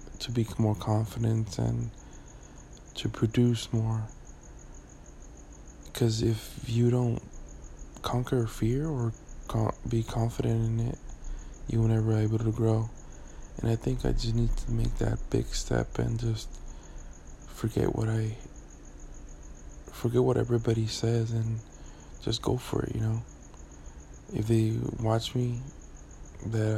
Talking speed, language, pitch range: 130 wpm, English, 70-115 Hz